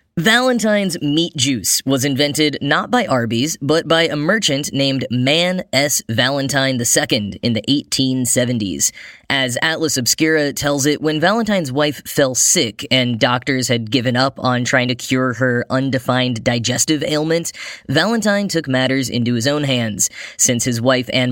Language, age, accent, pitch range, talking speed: English, 10-29, American, 125-155 Hz, 150 wpm